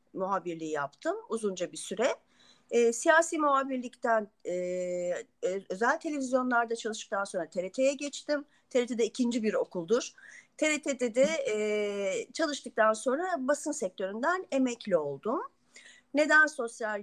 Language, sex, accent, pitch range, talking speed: Turkish, female, native, 190-300 Hz, 110 wpm